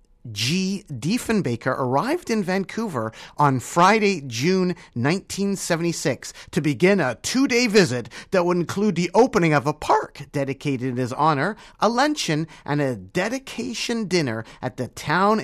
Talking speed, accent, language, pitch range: 135 wpm, American, English, 135-205 Hz